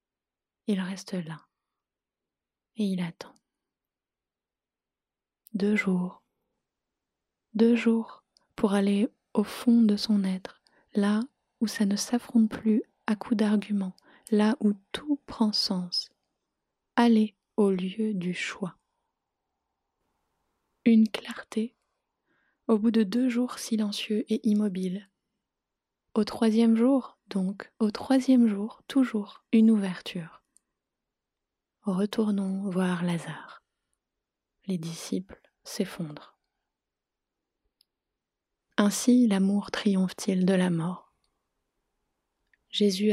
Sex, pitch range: female, 190-225 Hz